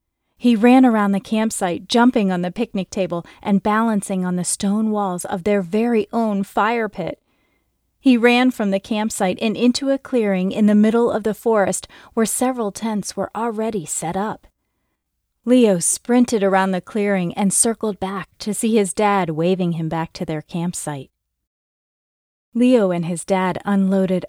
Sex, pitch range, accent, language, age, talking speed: female, 175-215 Hz, American, English, 30-49, 165 wpm